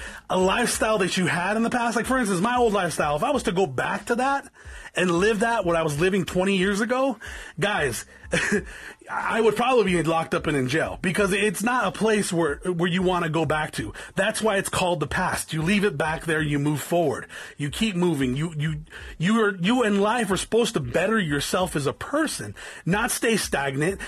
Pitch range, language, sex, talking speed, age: 175-225 Hz, English, male, 225 wpm, 30-49